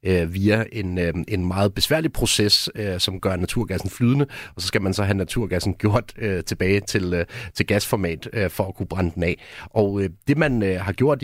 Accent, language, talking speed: native, Danish, 175 wpm